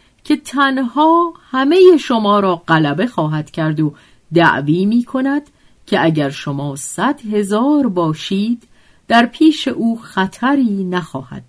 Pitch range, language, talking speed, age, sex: 160-250 Hz, Persian, 120 wpm, 50-69, female